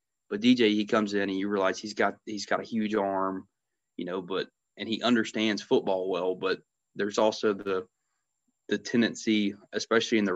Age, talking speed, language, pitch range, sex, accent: 20-39, 185 wpm, English, 100-110 Hz, male, American